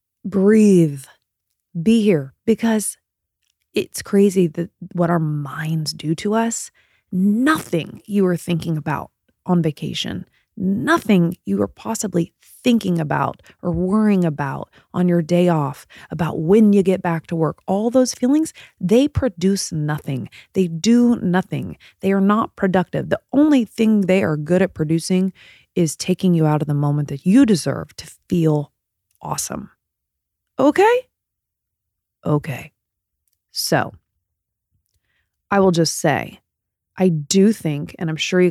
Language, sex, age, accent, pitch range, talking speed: English, female, 20-39, American, 155-200 Hz, 135 wpm